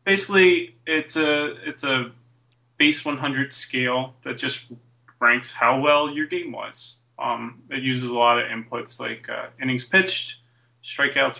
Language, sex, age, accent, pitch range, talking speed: English, male, 20-39, American, 120-145 Hz, 145 wpm